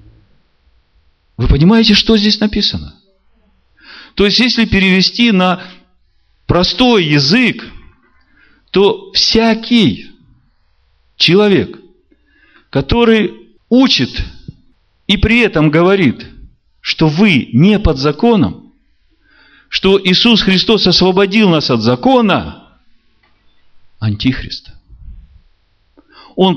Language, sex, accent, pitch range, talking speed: Russian, male, native, 130-210 Hz, 80 wpm